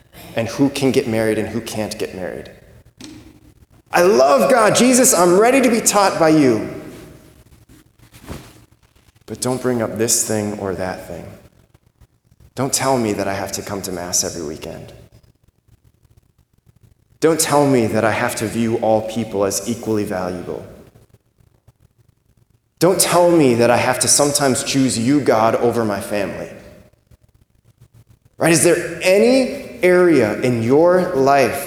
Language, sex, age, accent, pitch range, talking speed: English, male, 20-39, American, 115-170 Hz, 145 wpm